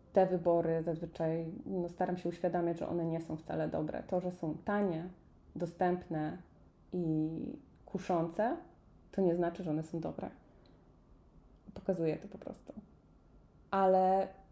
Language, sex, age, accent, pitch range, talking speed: Polish, female, 20-39, native, 175-215 Hz, 130 wpm